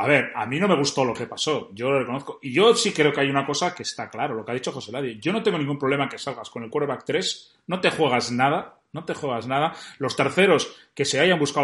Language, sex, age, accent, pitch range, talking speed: Spanish, male, 30-49, Spanish, 135-175 Hz, 285 wpm